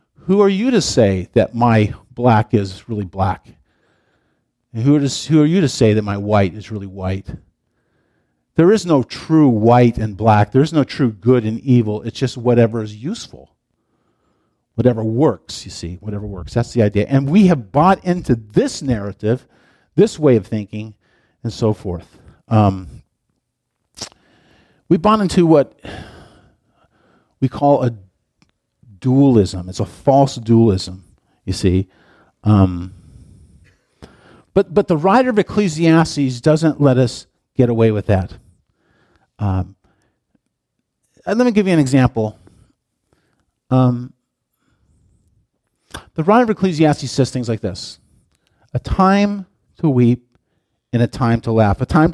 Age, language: 50-69, English